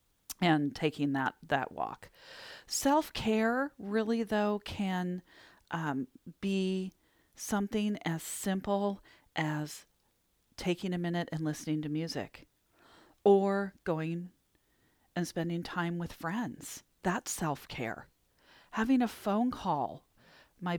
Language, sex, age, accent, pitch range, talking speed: English, female, 40-59, American, 160-220 Hz, 105 wpm